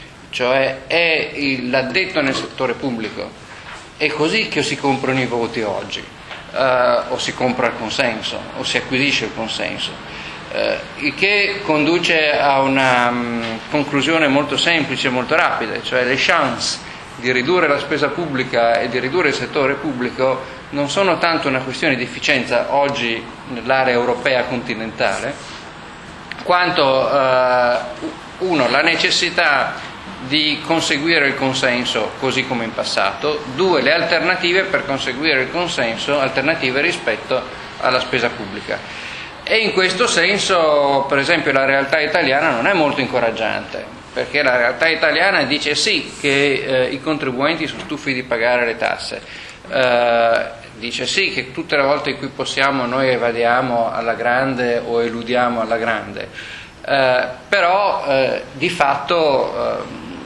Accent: native